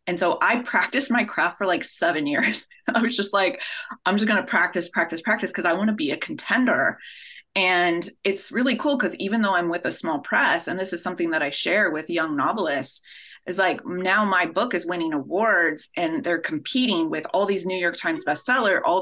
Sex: female